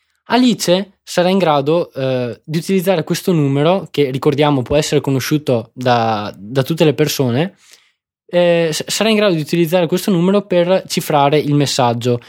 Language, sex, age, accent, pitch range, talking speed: Italian, male, 20-39, native, 135-180 Hz, 150 wpm